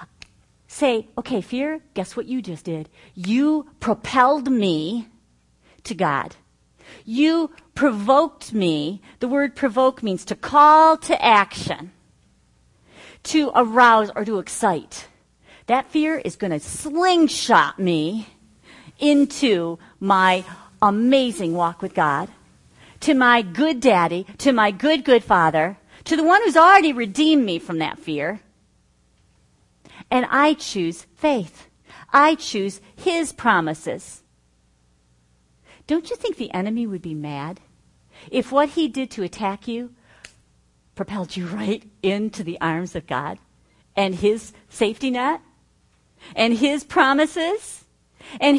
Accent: American